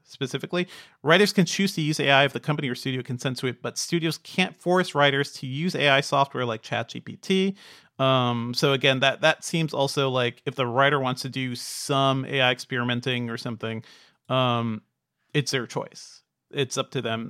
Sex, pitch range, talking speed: male, 125-150 Hz, 185 wpm